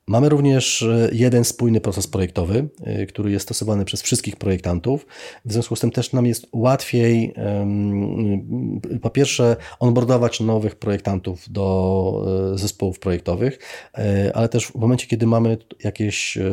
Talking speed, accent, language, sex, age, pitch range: 125 wpm, native, Polish, male, 30-49, 100-115 Hz